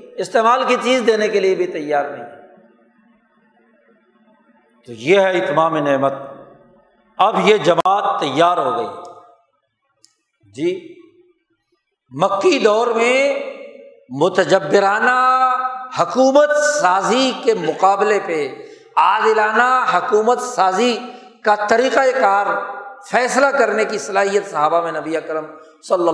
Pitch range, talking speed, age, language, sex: 180-265 Hz, 105 wpm, 60-79, Urdu, male